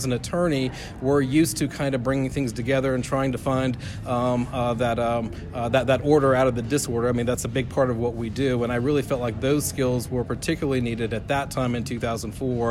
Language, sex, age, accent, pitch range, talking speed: English, male, 40-59, American, 120-135 Hz, 245 wpm